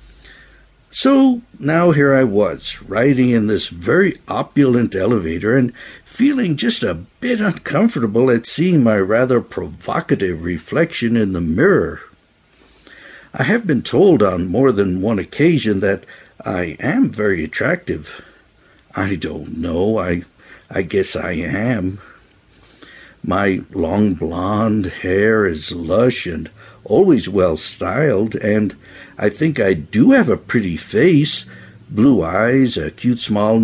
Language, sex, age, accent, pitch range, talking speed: English, male, 60-79, American, 95-130 Hz, 125 wpm